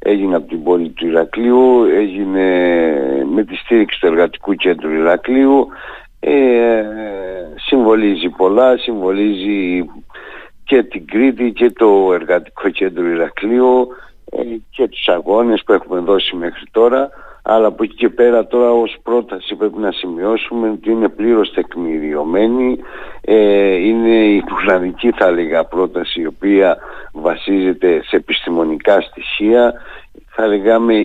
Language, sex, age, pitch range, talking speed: Greek, male, 60-79, 95-120 Hz, 125 wpm